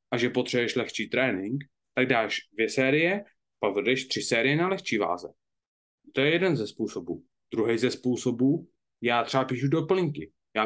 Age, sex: 20-39, male